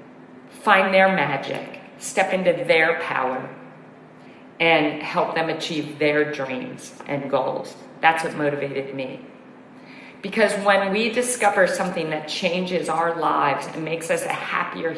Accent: American